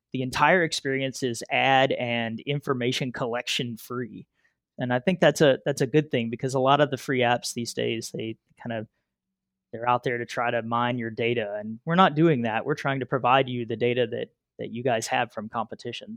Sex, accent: male, American